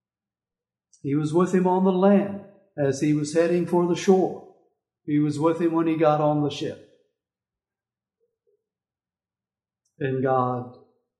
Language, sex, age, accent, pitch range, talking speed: English, male, 60-79, American, 145-200 Hz, 140 wpm